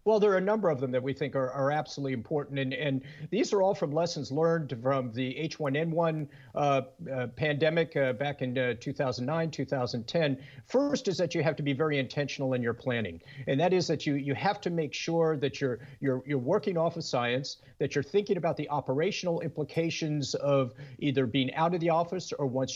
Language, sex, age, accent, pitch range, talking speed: English, male, 50-69, American, 135-170 Hz, 210 wpm